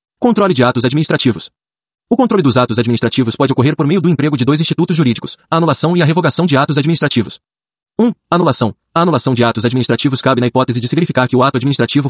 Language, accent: Portuguese, Brazilian